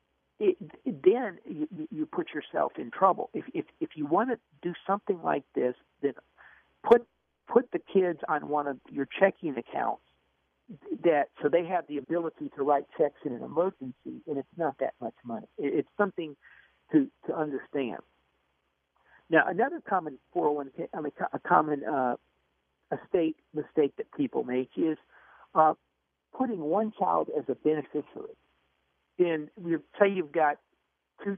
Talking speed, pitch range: 160 wpm, 135-205 Hz